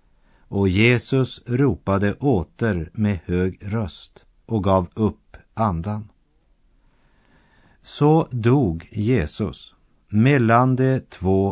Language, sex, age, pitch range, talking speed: Russian, male, 50-69, 90-115 Hz, 90 wpm